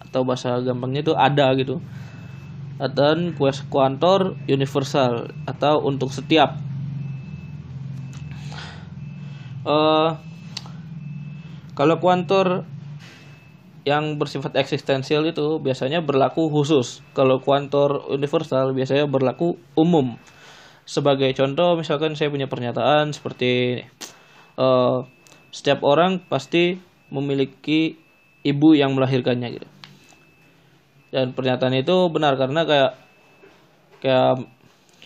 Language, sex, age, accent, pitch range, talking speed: Indonesian, male, 20-39, native, 130-155 Hz, 85 wpm